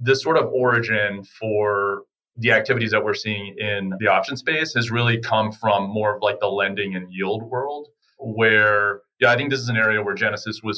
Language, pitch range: English, 100-115 Hz